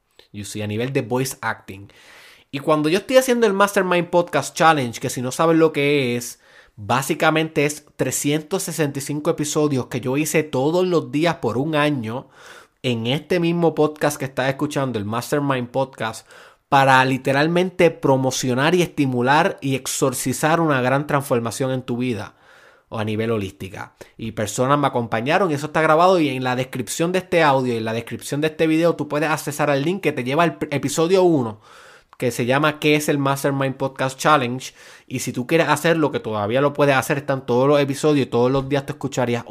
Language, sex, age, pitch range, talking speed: Spanish, male, 20-39, 125-155 Hz, 185 wpm